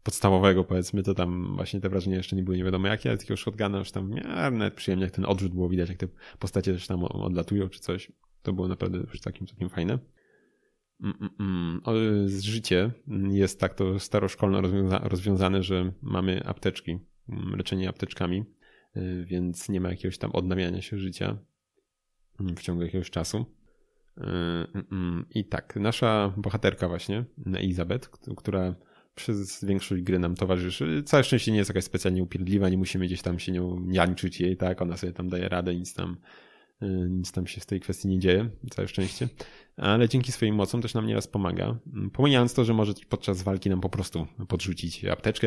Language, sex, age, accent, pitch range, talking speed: Polish, male, 20-39, native, 90-100 Hz, 175 wpm